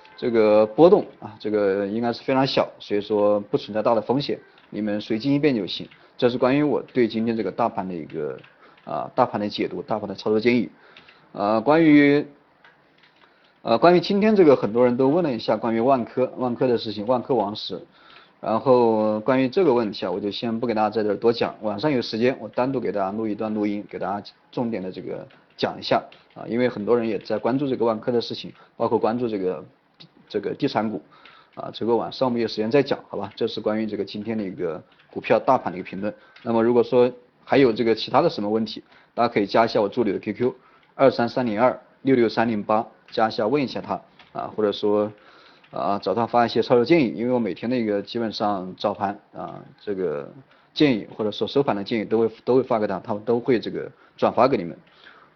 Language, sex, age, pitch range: Chinese, male, 30-49, 105-125 Hz